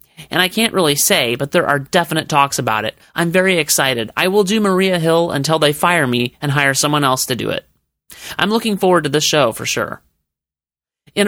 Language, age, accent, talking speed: English, 30-49, American, 215 wpm